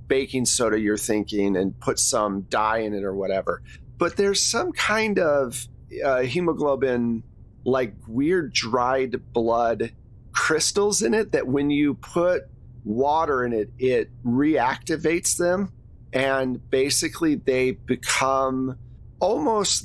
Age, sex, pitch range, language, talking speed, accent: 40-59, male, 120-150 Hz, English, 125 wpm, American